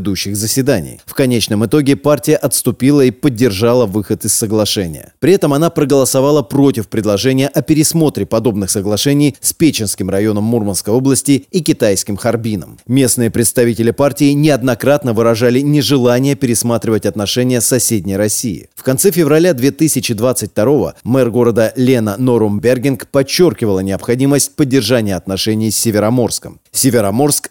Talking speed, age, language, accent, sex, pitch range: 120 wpm, 30-49, Russian, native, male, 110-140 Hz